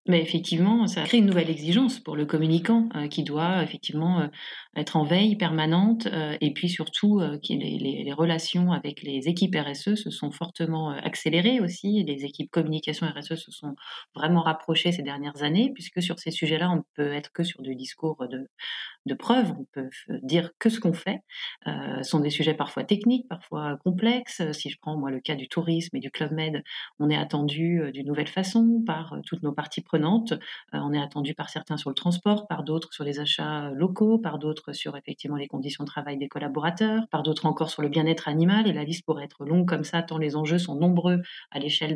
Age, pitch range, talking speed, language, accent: 30-49, 150-180 Hz, 215 wpm, French, French